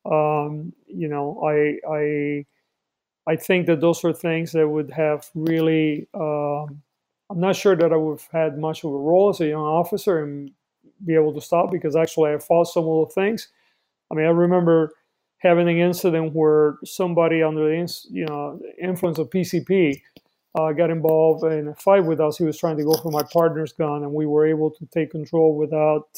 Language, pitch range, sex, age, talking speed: English, 155-175 Hz, male, 40-59, 200 wpm